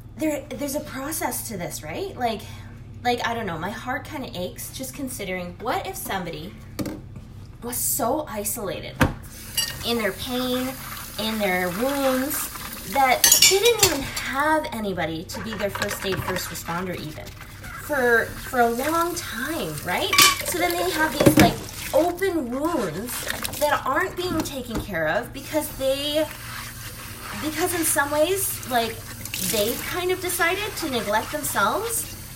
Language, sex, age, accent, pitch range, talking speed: English, female, 20-39, American, 175-285 Hz, 145 wpm